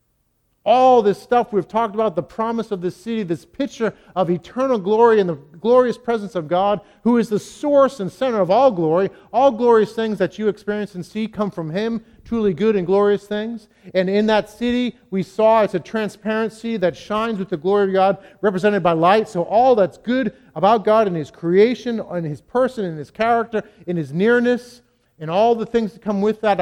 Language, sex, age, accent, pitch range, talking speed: English, male, 50-69, American, 160-215 Hz, 205 wpm